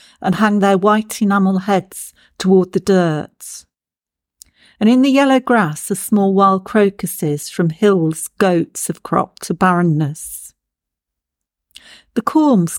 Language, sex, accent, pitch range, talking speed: English, female, British, 160-205 Hz, 125 wpm